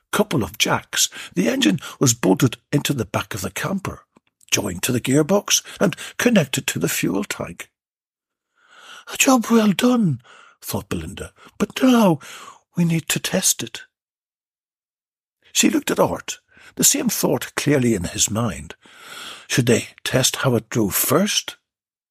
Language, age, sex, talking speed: English, 60-79, male, 145 wpm